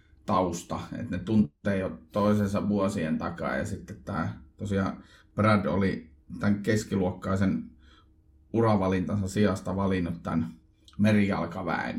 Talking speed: 105 wpm